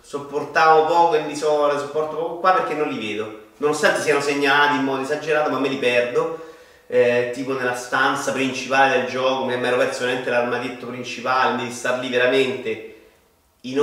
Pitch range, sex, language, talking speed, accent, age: 115-155 Hz, male, Italian, 170 wpm, native, 30-49